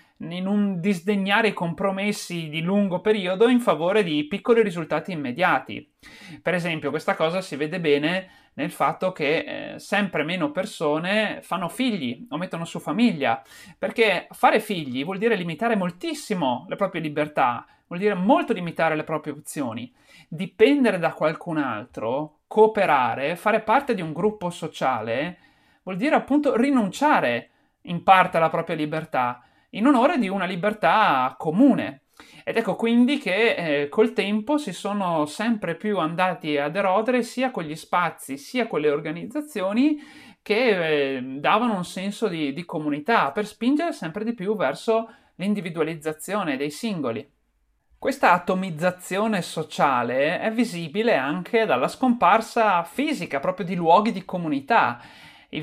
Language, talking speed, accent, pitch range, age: Italian, 140 wpm, native, 165-225 Hz, 30-49